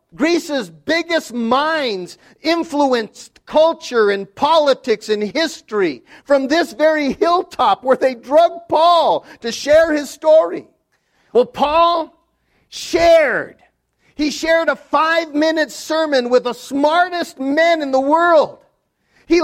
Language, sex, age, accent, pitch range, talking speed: English, male, 50-69, American, 270-330 Hz, 115 wpm